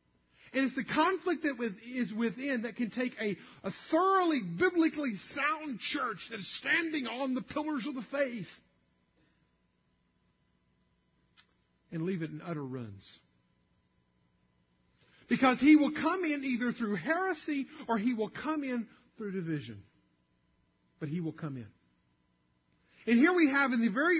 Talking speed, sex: 145 wpm, male